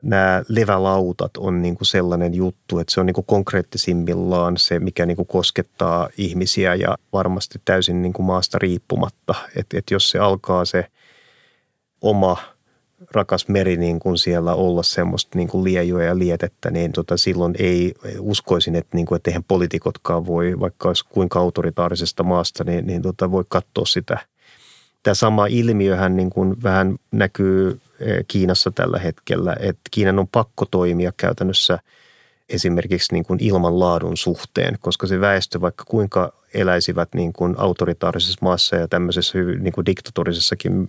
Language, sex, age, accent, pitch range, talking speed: Finnish, male, 30-49, native, 85-95 Hz, 140 wpm